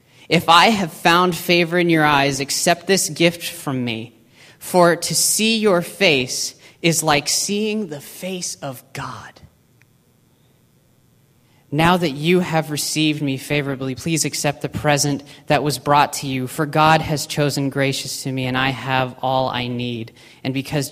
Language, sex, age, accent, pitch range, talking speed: English, male, 30-49, American, 130-170 Hz, 160 wpm